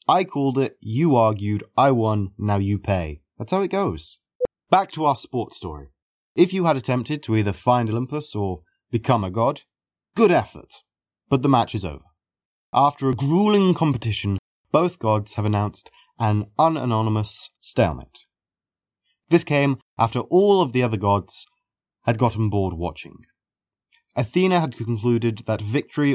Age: 20-39